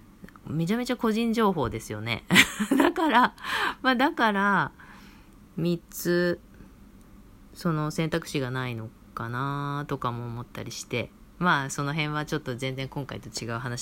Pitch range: 120-195 Hz